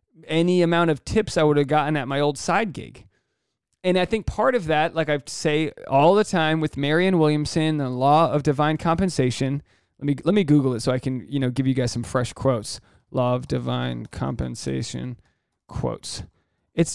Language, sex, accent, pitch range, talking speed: English, male, American, 125-170 Hz, 200 wpm